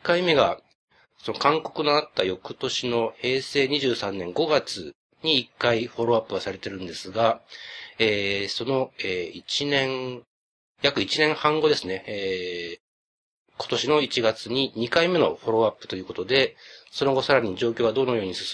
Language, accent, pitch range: Japanese, native, 115-145 Hz